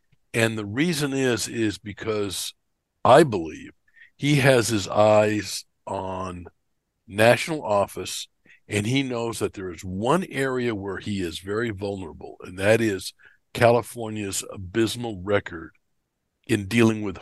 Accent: American